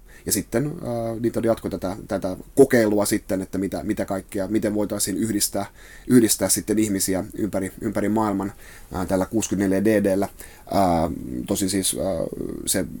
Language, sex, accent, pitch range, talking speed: Finnish, male, native, 95-110 Hz, 115 wpm